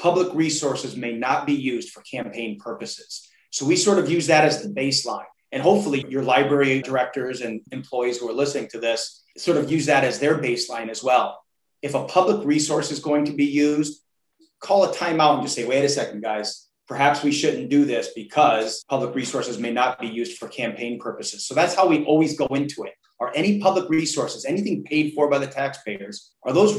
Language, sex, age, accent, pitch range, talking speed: English, male, 30-49, American, 115-145 Hz, 210 wpm